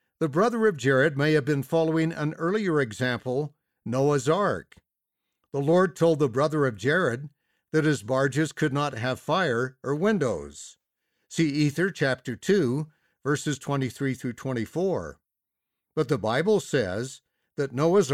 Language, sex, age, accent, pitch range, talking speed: English, male, 60-79, American, 135-170 Hz, 140 wpm